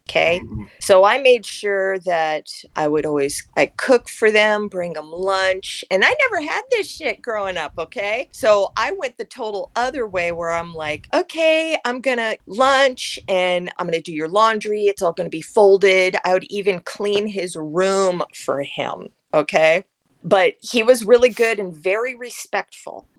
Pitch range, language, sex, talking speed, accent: 165-220 Hz, English, female, 175 wpm, American